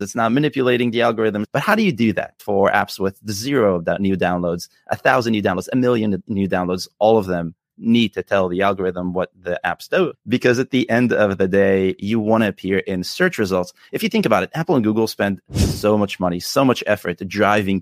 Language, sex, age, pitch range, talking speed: English, male, 30-49, 95-115 Hz, 230 wpm